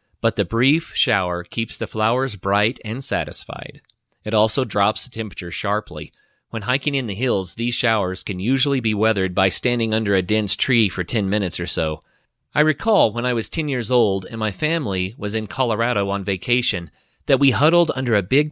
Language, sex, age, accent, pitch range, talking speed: English, male, 30-49, American, 100-125 Hz, 195 wpm